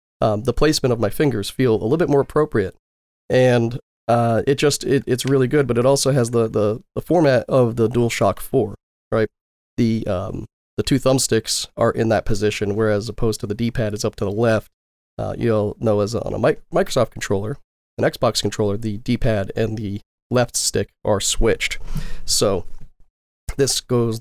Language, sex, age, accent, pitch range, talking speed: English, male, 40-59, American, 110-135 Hz, 190 wpm